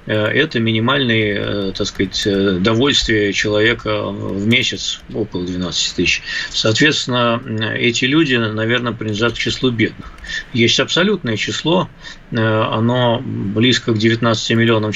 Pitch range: 110-135 Hz